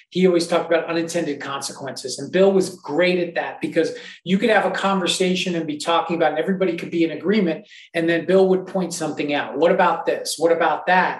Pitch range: 165-195 Hz